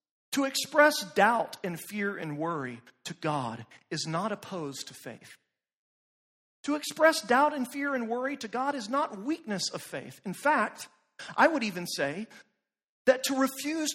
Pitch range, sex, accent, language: 160-255 Hz, male, American, English